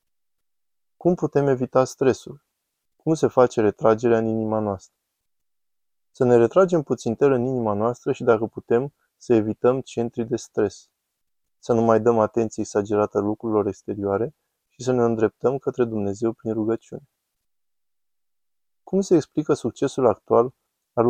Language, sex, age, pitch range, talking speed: Romanian, male, 20-39, 110-125 Hz, 140 wpm